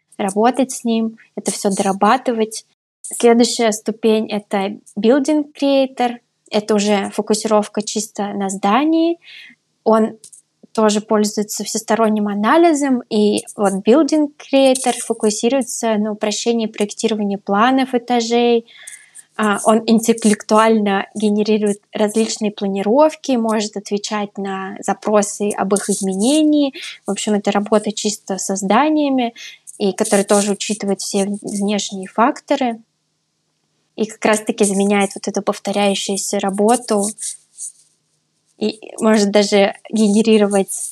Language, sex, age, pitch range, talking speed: Russian, female, 20-39, 200-235 Hz, 105 wpm